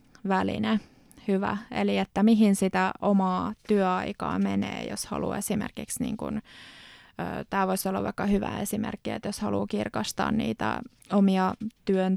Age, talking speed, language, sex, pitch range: 20-39, 130 wpm, Finnish, female, 190-220 Hz